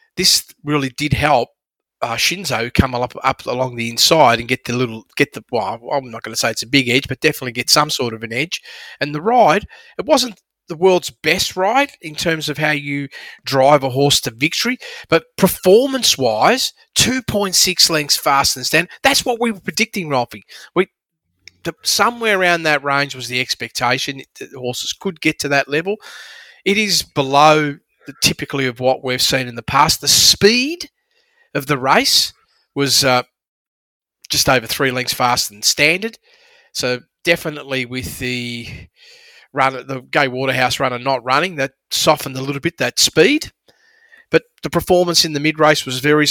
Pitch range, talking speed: 130-180 Hz, 180 wpm